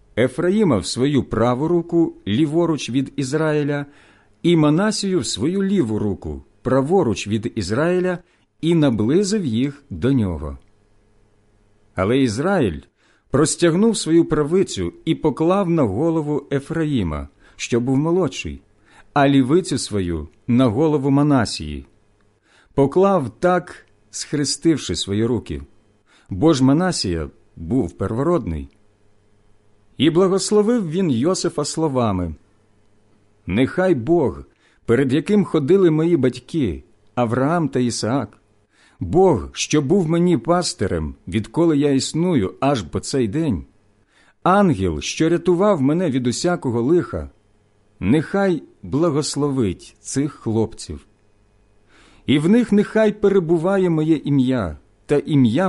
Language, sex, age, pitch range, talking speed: Ukrainian, male, 50-69, 105-165 Hz, 105 wpm